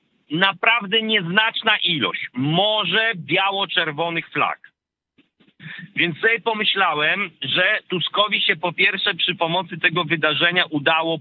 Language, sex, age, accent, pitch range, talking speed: Polish, male, 50-69, native, 165-205 Hz, 100 wpm